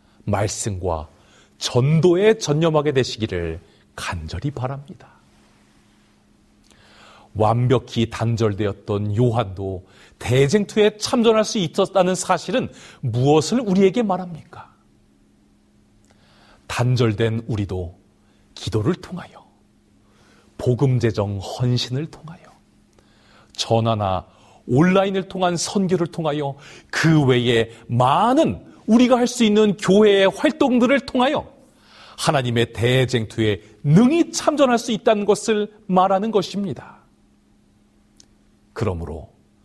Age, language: 40-59, Korean